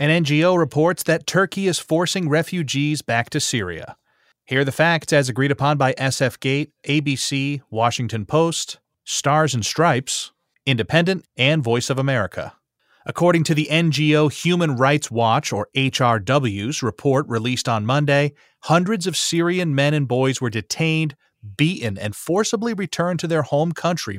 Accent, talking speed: American, 145 wpm